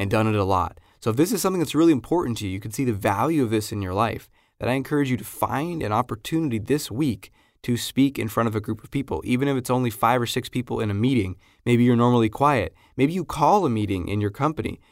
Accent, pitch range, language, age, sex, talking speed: American, 100-130 Hz, English, 20-39, male, 270 wpm